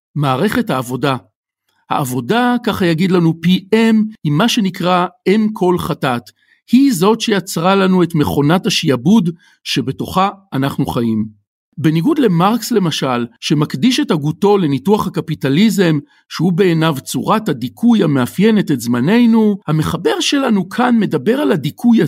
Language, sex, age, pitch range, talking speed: Hebrew, male, 50-69, 145-220 Hz, 120 wpm